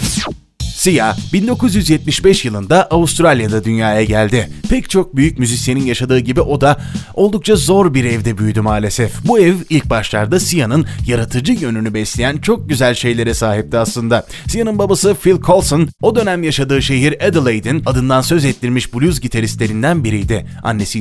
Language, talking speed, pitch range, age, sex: Turkish, 140 wpm, 110-160 Hz, 30-49, male